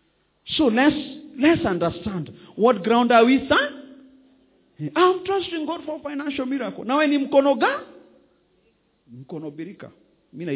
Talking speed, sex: 95 wpm, male